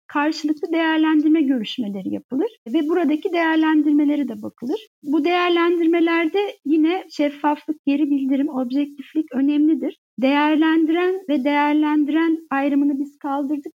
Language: Turkish